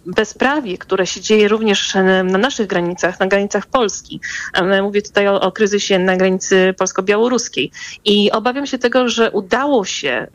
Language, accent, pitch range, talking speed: Polish, native, 185-215 Hz, 150 wpm